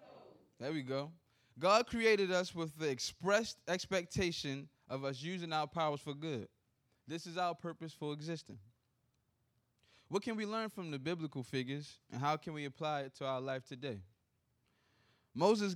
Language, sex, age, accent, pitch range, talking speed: English, male, 20-39, American, 120-165 Hz, 160 wpm